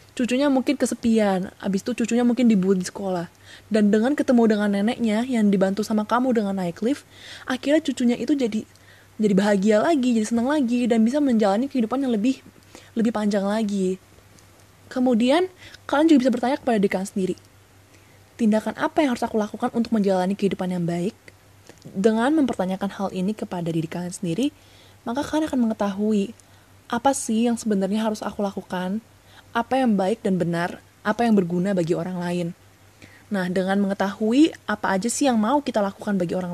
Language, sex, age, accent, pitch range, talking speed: Indonesian, female, 20-39, native, 190-245 Hz, 170 wpm